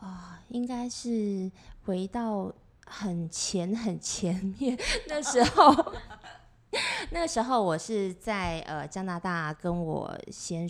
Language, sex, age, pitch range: Chinese, female, 20-39, 165-215 Hz